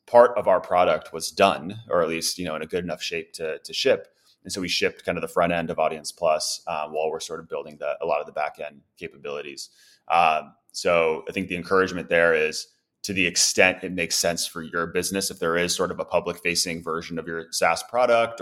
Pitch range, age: 80-105 Hz, 30-49